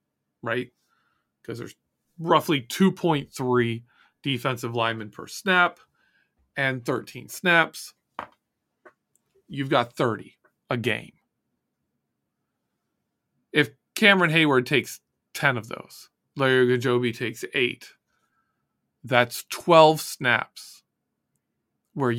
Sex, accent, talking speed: male, American, 85 wpm